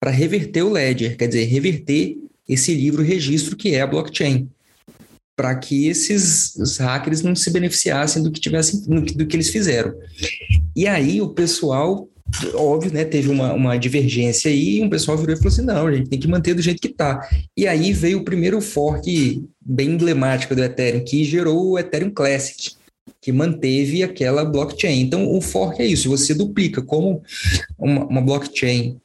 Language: Portuguese